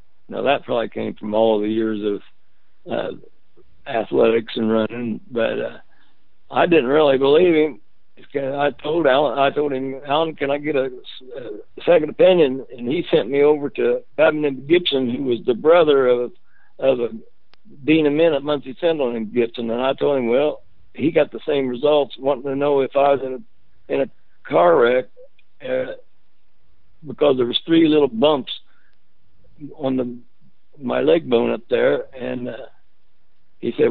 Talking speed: 170 wpm